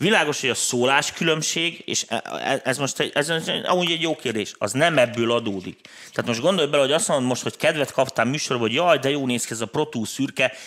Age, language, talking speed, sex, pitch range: 30-49, Hungarian, 220 wpm, male, 110-145 Hz